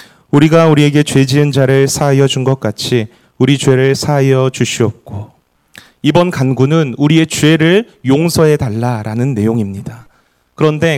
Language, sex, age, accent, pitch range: Korean, male, 30-49, native, 130-180 Hz